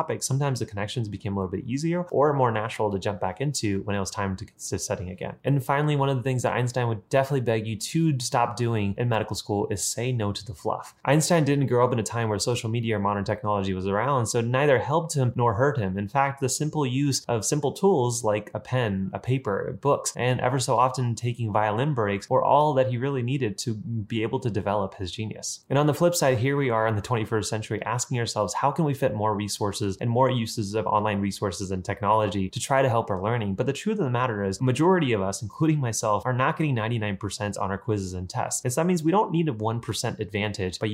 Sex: male